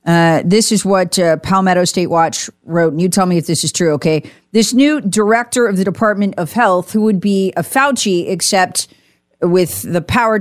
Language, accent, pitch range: English, American, 175-225 Hz